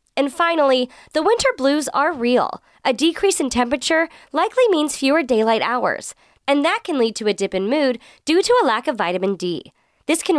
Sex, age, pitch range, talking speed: female, 20-39, 225-325 Hz, 195 wpm